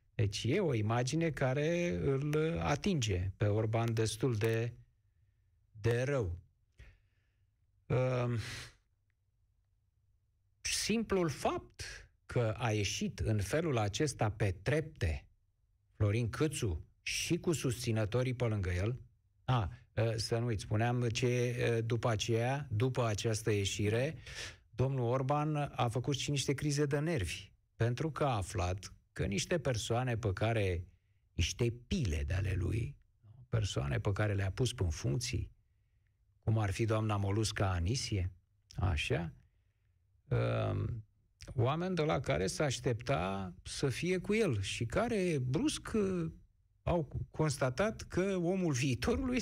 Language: Romanian